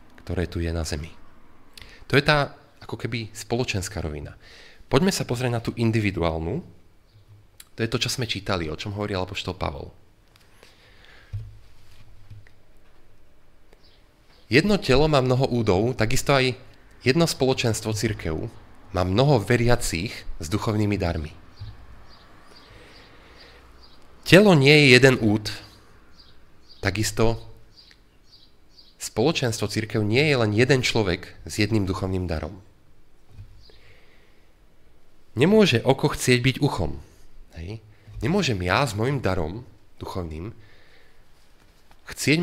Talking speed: 105 wpm